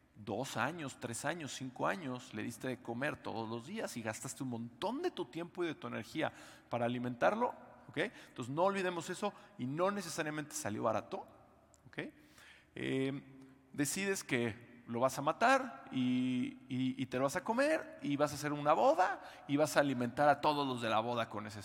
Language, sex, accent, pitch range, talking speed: Spanish, male, Mexican, 120-165 Hz, 195 wpm